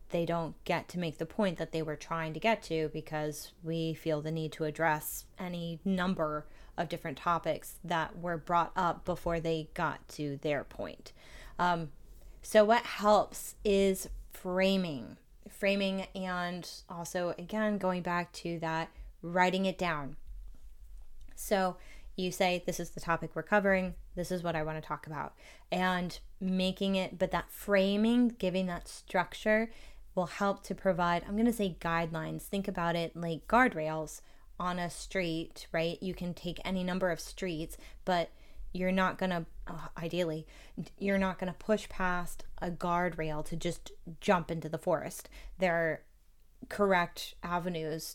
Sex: female